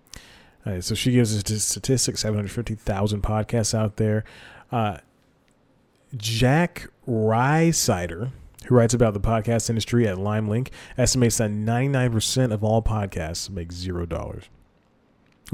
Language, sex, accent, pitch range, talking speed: English, male, American, 100-120 Hz, 120 wpm